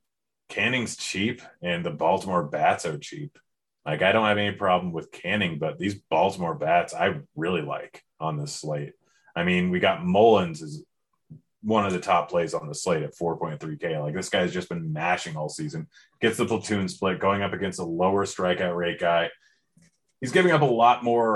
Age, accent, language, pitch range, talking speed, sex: 30-49, American, English, 90-110 Hz, 190 wpm, male